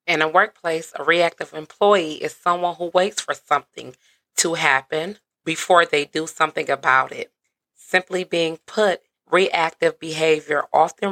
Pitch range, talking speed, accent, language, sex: 150-180 Hz, 140 wpm, American, English, female